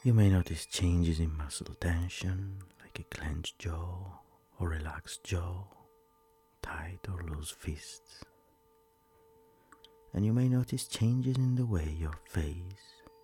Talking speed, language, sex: 125 wpm, English, male